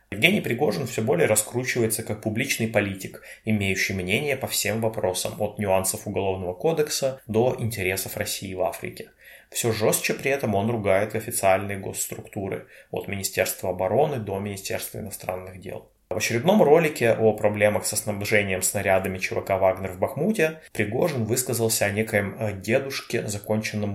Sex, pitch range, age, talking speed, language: male, 95-115 Hz, 20-39, 140 wpm, Russian